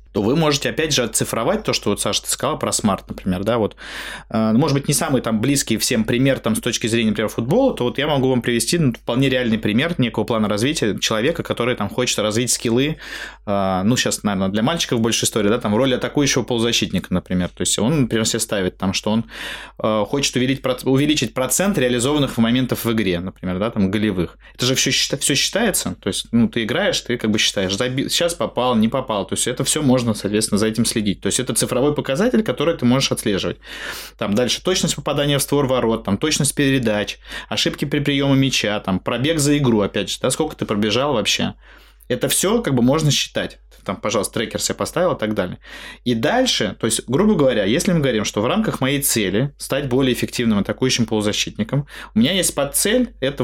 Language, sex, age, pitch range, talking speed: Russian, male, 20-39, 110-135 Hz, 210 wpm